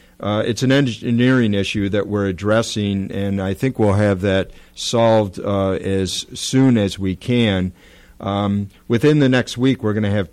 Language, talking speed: English, 175 wpm